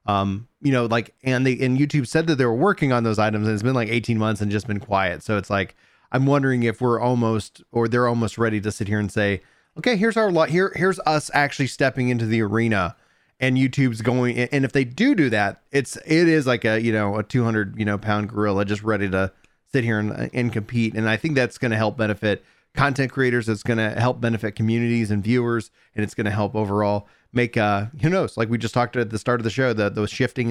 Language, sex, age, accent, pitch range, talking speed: English, male, 30-49, American, 105-135 Hz, 250 wpm